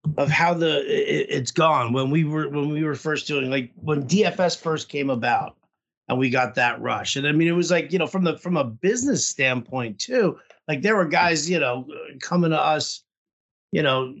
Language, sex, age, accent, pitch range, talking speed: English, male, 50-69, American, 130-160 Hz, 215 wpm